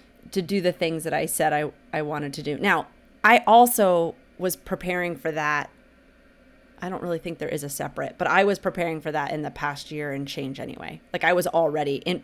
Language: English